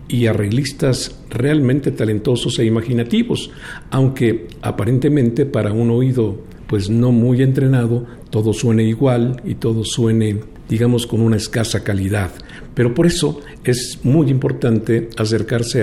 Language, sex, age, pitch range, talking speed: Spanish, male, 50-69, 110-130 Hz, 125 wpm